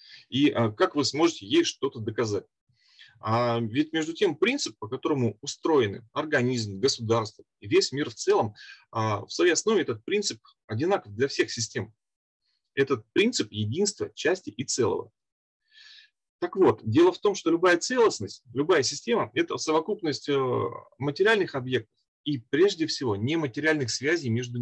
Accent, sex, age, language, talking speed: native, male, 30-49, Russian, 135 wpm